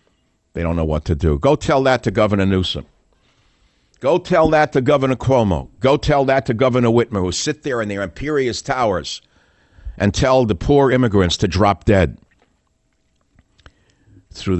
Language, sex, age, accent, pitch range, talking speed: English, male, 60-79, American, 95-130 Hz, 165 wpm